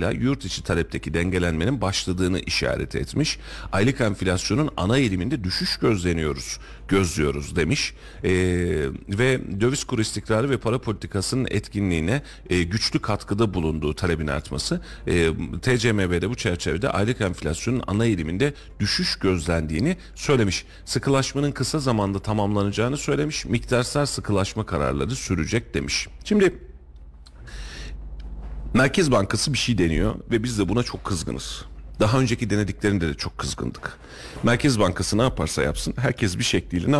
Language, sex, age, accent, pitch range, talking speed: Turkish, male, 40-59, native, 85-115 Hz, 125 wpm